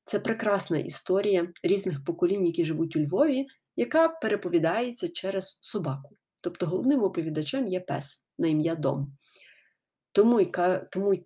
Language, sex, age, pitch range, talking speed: Ukrainian, female, 20-39, 155-205 Hz, 125 wpm